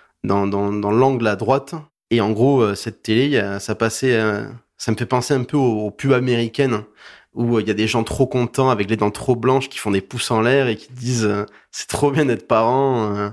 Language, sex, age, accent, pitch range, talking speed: French, male, 20-39, French, 100-125 Hz, 220 wpm